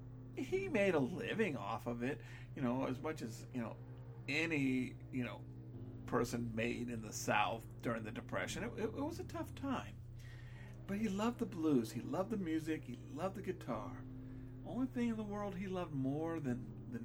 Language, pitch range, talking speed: English, 120-145 Hz, 195 wpm